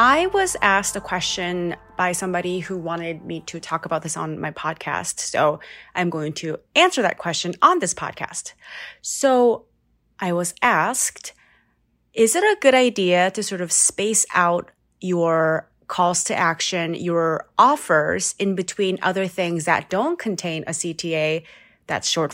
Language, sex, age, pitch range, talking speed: English, female, 30-49, 165-210 Hz, 155 wpm